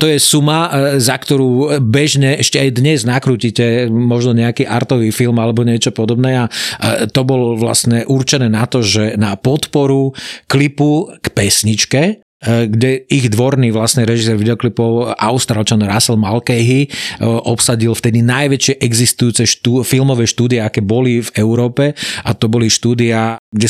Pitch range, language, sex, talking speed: 115-135 Hz, Slovak, male, 140 wpm